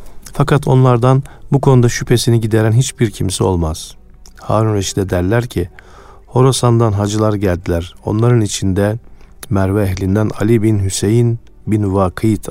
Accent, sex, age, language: native, male, 50-69, Turkish